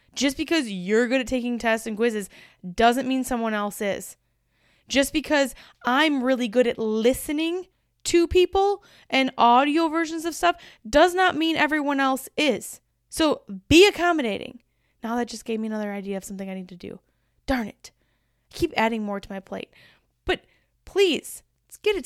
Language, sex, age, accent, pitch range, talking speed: English, female, 10-29, American, 220-275 Hz, 170 wpm